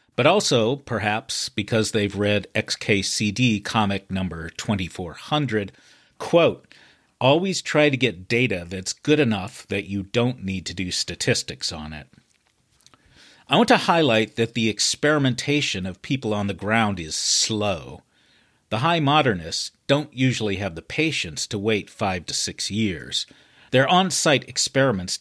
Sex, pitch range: male, 100-135 Hz